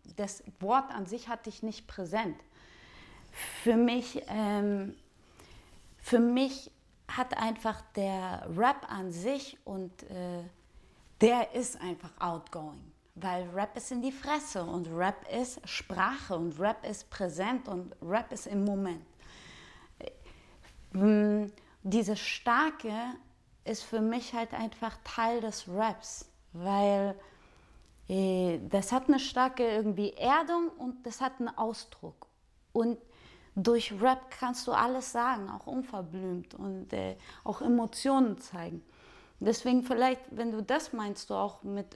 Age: 30-49